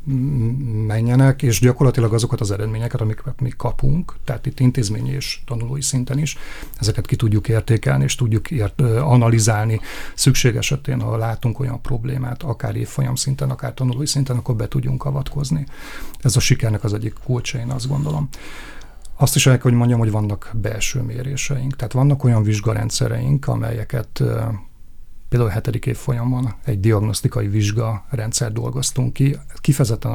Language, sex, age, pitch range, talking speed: Hungarian, male, 40-59, 115-135 Hz, 150 wpm